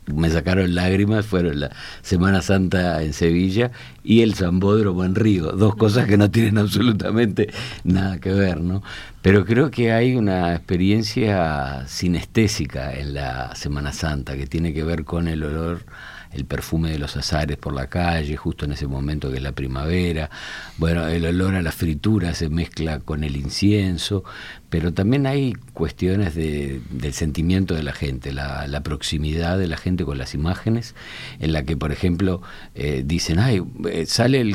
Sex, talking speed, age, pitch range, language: male, 170 wpm, 50-69, 75-100 Hz, Spanish